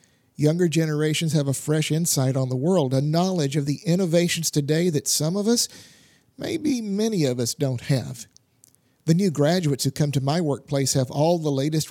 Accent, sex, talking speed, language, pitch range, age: American, male, 185 wpm, English, 140-165 Hz, 50-69